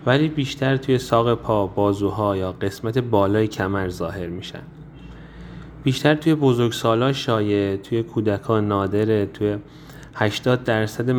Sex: male